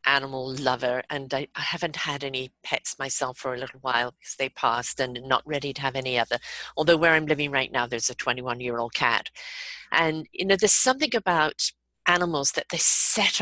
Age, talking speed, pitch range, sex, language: 40-59, 205 wpm, 145-195 Hz, female, English